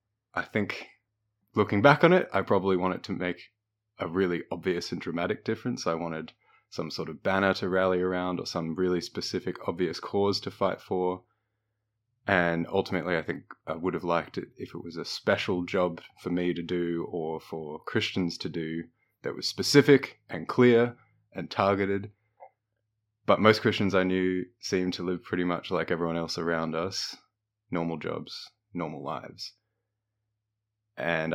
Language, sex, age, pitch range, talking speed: English, male, 20-39, 90-110 Hz, 165 wpm